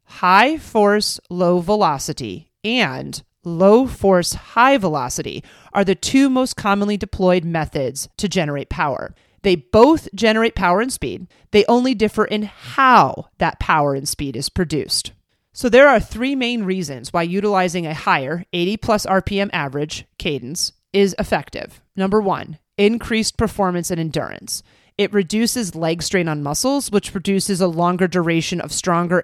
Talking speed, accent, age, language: 150 wpm, American, 30-49, English